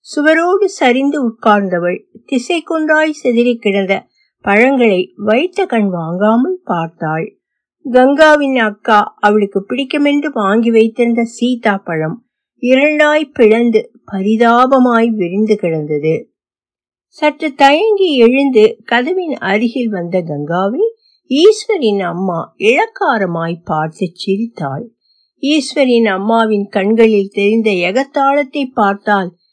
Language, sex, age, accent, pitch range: Tamil, female, 60-79, native, 195-275 Hz